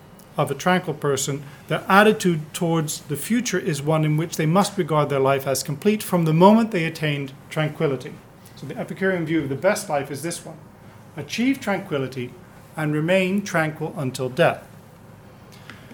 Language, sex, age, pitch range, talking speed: English, male, 40-59, 140-180 Hz, 165 wpm